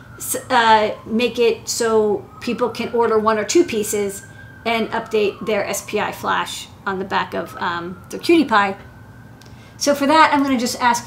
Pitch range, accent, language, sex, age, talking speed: 195-250 Hz, American, English, female, 40-59, 175 wpm